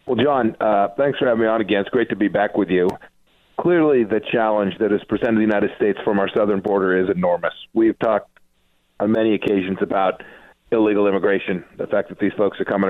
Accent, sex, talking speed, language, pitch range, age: American, male, 220 wpm, English, 100-130 Hz, 40-59